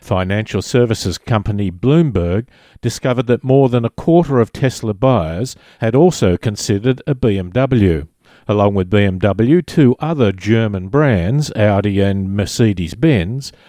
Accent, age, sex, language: Australian, 50-69, male, English